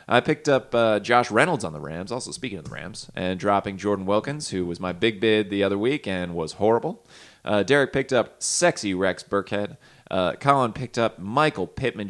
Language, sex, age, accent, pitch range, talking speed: English, male, 30-49, American, 90-120 Hz, 210 wpm